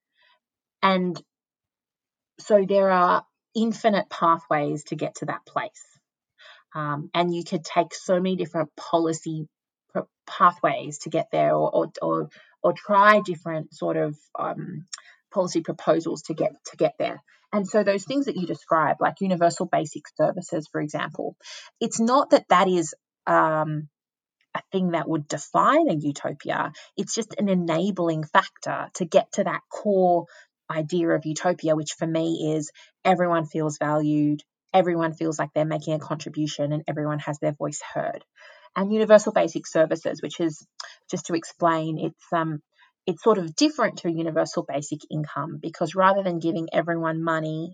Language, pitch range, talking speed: English, 155-185 Hz, 155 wpm